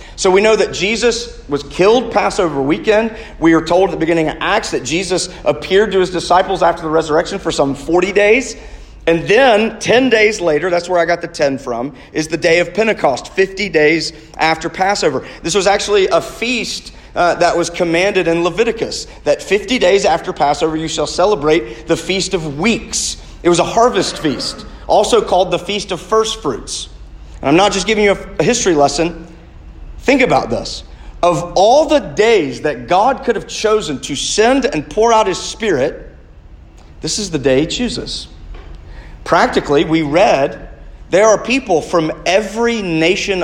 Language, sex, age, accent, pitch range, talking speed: English, male, 40-59, American, 155-205 Hz, 180 wpm